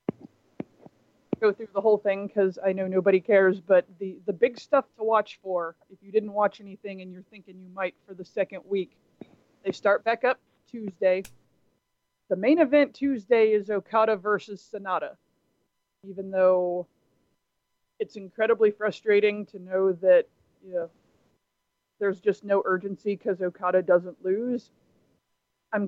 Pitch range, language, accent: 185-215 Hz, English, American